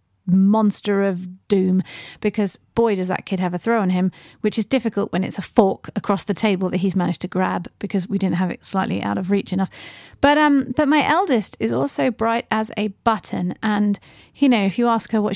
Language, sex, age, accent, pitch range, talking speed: English, female, 30-49, British, 190-255 Hz, 225 wpm